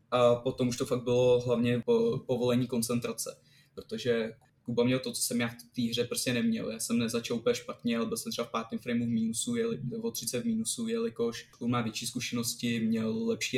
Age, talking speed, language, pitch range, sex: 20-39, 210 wpm, Czech, 120-140 Hz, male